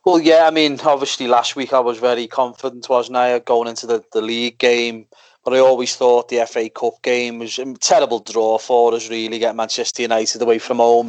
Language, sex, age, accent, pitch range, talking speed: English, male, 30-49, British, 110-125 Hz, 215 wpm